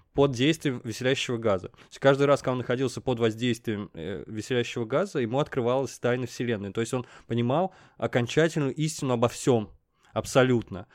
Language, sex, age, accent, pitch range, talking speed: Russian, male, 20-39, native, 115-140 Hz, 150 wpm